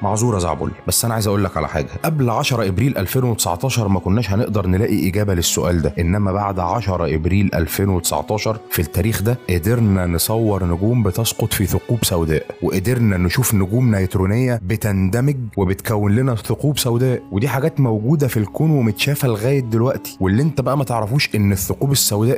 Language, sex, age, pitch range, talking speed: Arabic, male, 30-49, 95-115 Hz, 165 wpm